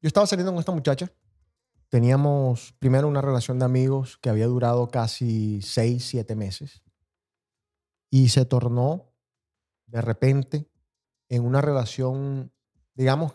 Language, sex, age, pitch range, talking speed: Spanish, male, 30-49, 115-140 Hz, 125 wpm